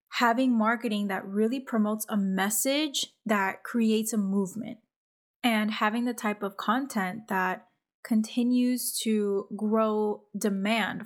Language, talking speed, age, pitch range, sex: English, 120 wpm, 20-39, 195-235 Hz, female